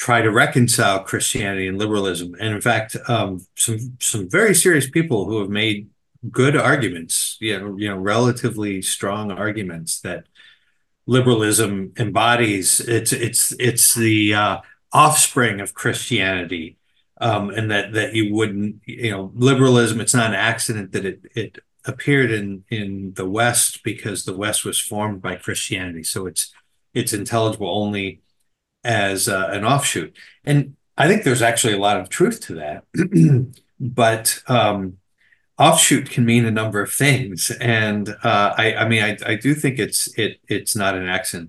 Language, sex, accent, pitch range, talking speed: English, male, American, 100-120 Hz, 160 wpm